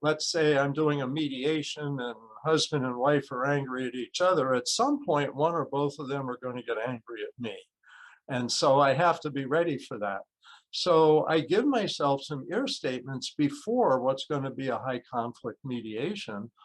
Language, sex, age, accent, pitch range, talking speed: English, male, 50-69, American, 135-160 Hz, 200 wpm